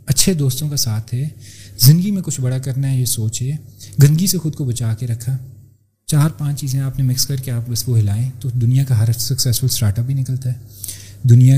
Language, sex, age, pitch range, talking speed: Urdu, male, 30-49, 110-140 Hz, 225 wpm